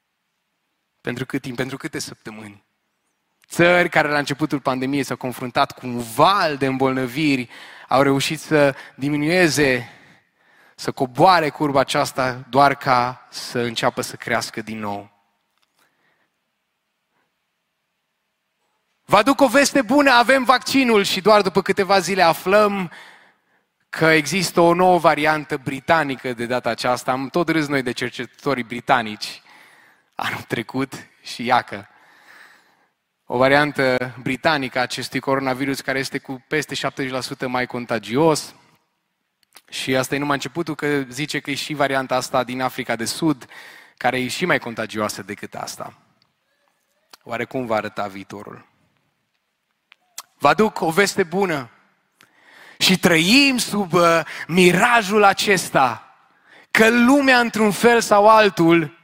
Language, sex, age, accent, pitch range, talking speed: Romanian, male, 20-39, native, 125-175 Hz, 125 wpm